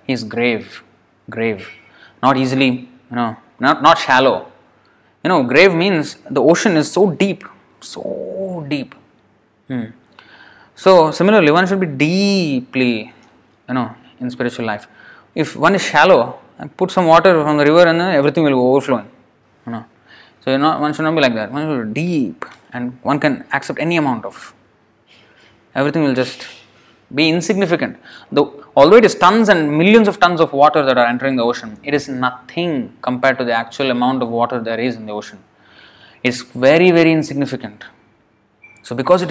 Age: 20-39